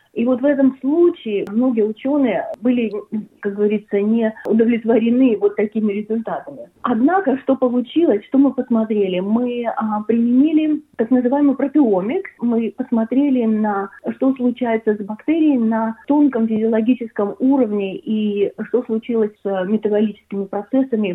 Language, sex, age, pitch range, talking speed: Russian, female, 30-49, 205-260 Hz, 125 wpm